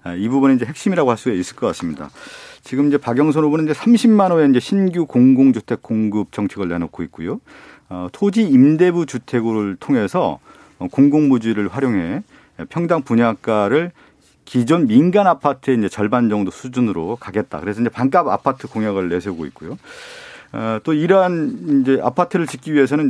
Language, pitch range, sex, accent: Korean, 110-160 Hz, male, native